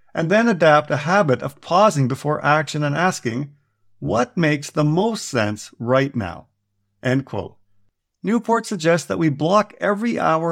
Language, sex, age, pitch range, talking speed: English, male, 50-69, 130-205 Hz, 155 wpm